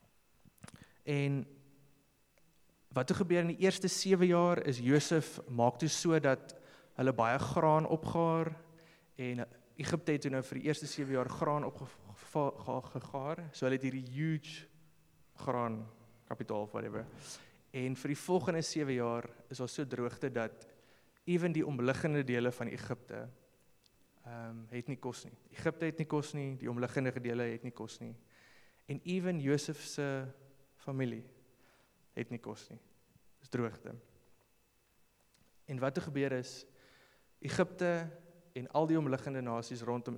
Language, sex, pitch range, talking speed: English, male, 120-150 Hz, 140 wpm